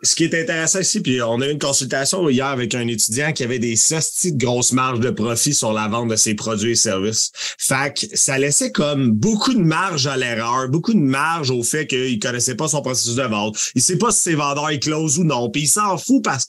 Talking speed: 255 wpm